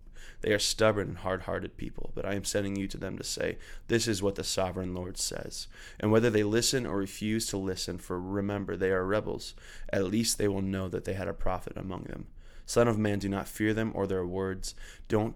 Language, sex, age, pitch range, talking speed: English, male, 20-39, 95-105 Hz, 225 wpm